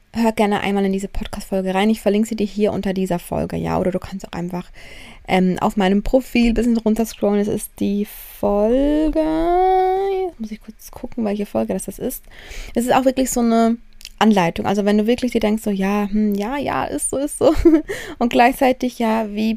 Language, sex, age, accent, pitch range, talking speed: German, female, 20-39, German, 195-235 Hz, 210 wpm